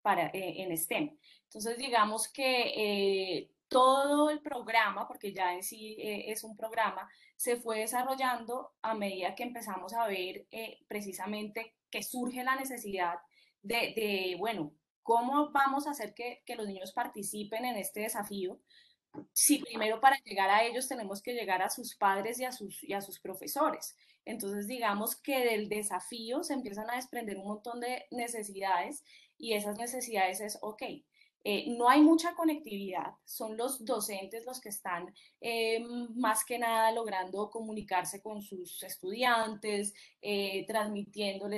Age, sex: 10-29, female